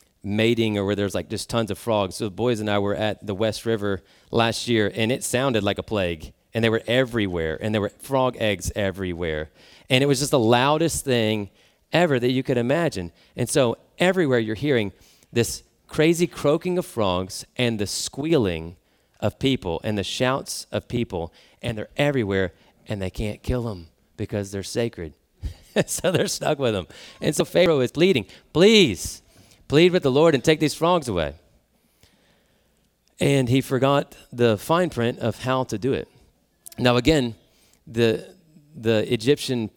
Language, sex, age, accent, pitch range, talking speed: English, male, 30-49, American, 100-135 Hz, 175 wpm